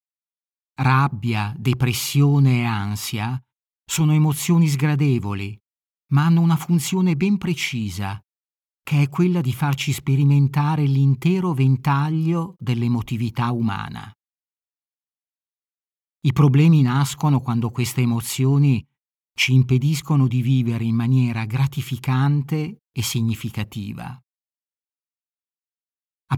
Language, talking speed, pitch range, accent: Italian, 90 wpm, 115-145 Hz, native